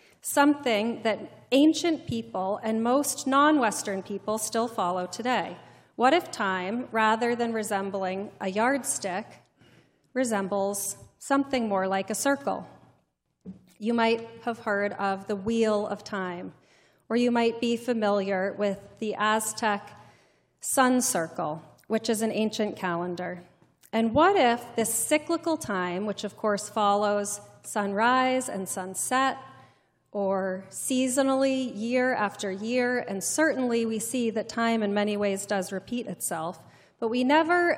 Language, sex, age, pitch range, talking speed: English, female, 30-49, 200-250 Hz, 130 wpm